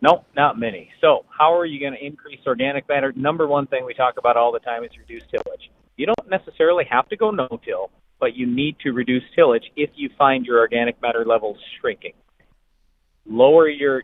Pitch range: 120-175 Hz